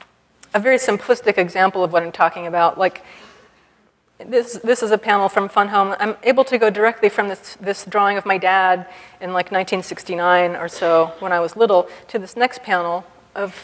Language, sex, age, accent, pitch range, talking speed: English, female, 30-49, American, 175-210 Hz, 195 wpm